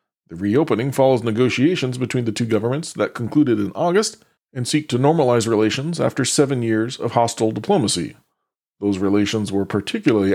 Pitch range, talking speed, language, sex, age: 105-130 Hz, 155 wpm, English, male, 40-59